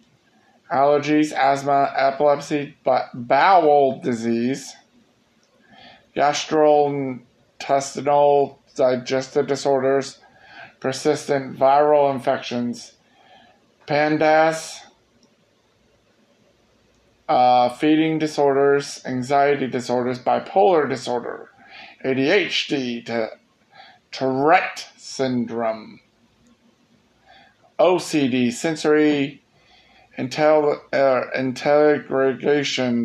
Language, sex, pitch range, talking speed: English, male, 125-145 Hz, 50 wpm